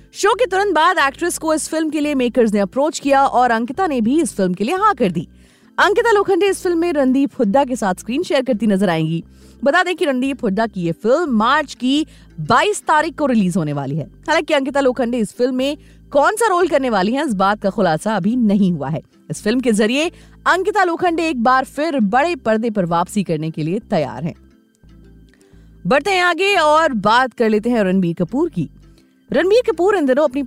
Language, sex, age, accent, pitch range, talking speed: Hindi, female, 30-49, native, 195-310 Hz, 160 wpm